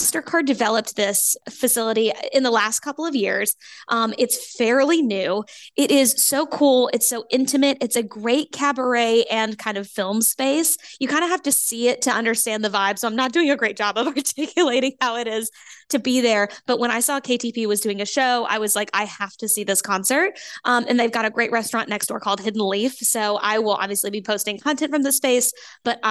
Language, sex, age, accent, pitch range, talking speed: English, female, 10-29, American, 220-270 Hz, 225 wpm